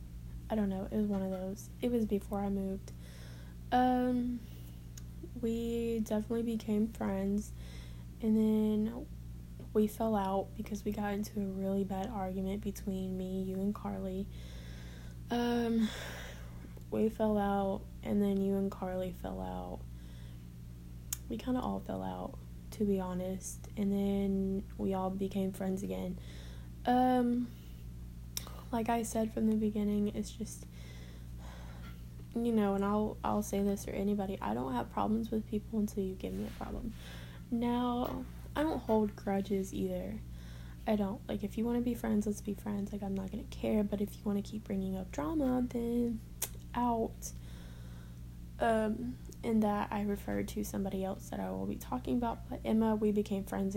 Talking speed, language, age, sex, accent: 165 wpm, English, 10-29, female, American